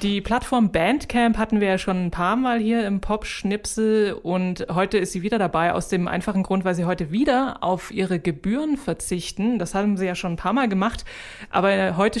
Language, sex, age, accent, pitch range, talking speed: German, female, 20-39, German, 175-215 Hz, 210 wpm